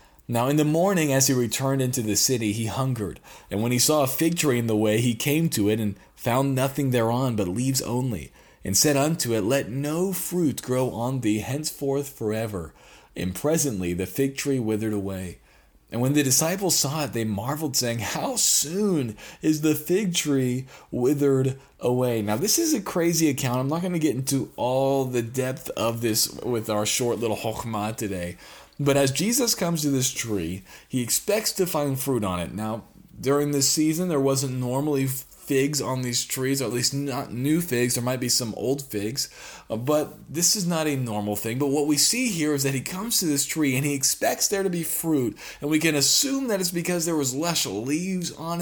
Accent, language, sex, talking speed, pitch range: American, English, male, 210 wpm, 120-155 Hz